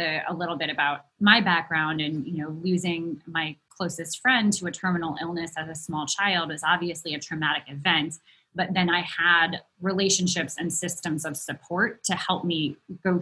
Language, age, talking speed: English, 20-39, 175 wpm